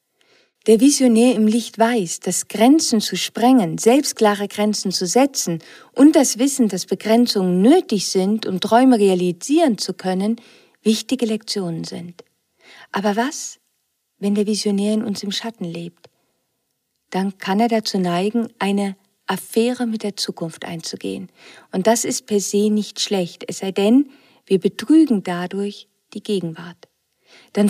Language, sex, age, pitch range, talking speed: German, female, 50-69, 195-240 Hz, 140 wpm